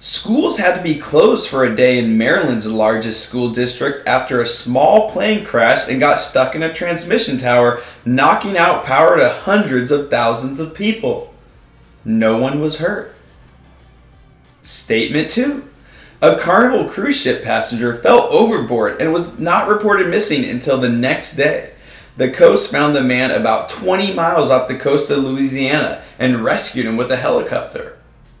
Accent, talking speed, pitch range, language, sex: American, 160 wpm, 125-175 Hz, English, male